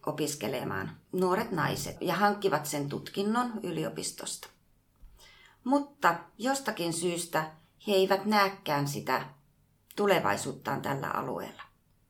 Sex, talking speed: female, 90 wpm